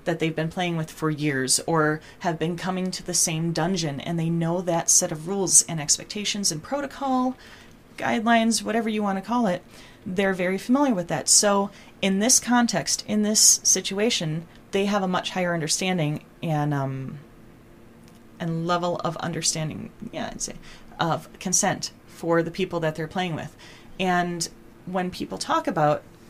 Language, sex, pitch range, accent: English, female, 155-190 Hz, American